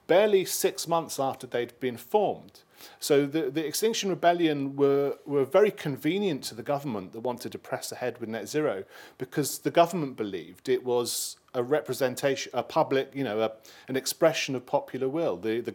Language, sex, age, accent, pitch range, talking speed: English, male, 40-59, British, 120-145 Hz, 180 wpm